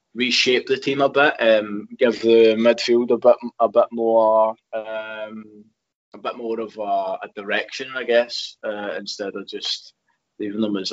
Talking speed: 170 wpm